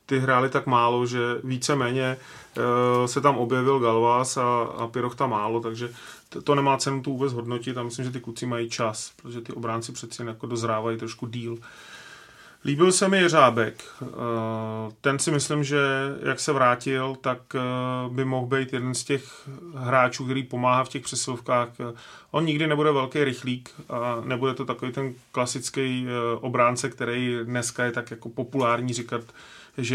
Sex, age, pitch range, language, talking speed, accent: male, 30-49, 120-135 Hz, Czech, 170 wpm, native